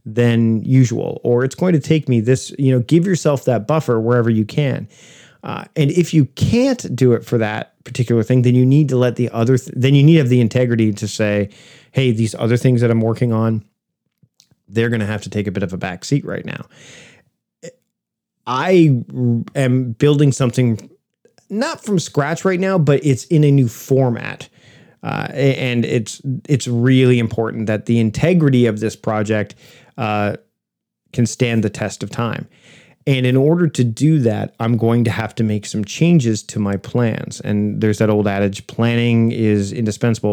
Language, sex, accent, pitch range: English, male, American, 110-135 Hz